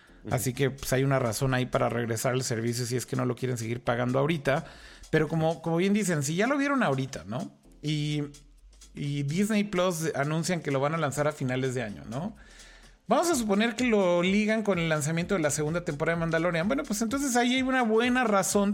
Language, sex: Spanish, male